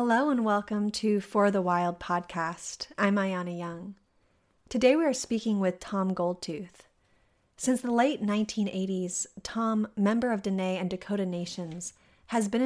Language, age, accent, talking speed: English, 30-49, American, 145 wpm